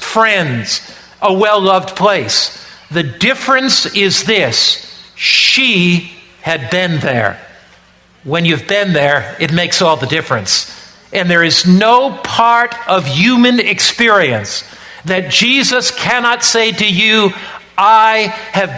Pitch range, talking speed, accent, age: 180-225 Hz, 120 wpm, American, 50-69